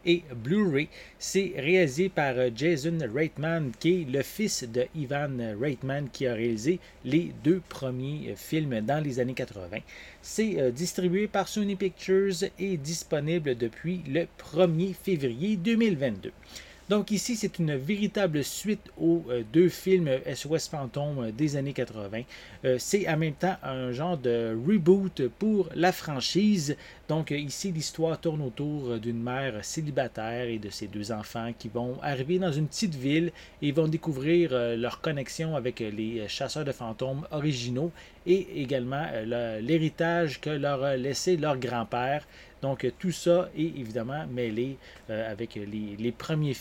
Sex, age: male, 30-49